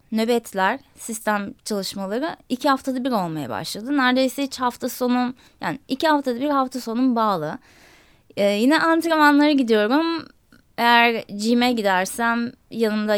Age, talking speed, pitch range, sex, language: 20-39, 125 wpm, 205-265 Hz, female, Turkish